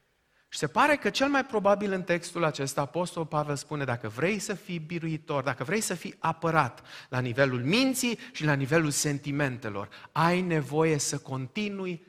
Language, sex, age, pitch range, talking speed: Romanian, male, 30-49, 135-190 Hz, 170 wpm